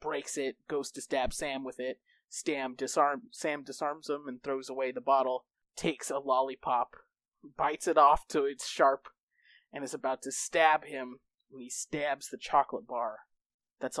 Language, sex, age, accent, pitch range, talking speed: English, male, 20-39, American, 120-145 Hz, 170 wpm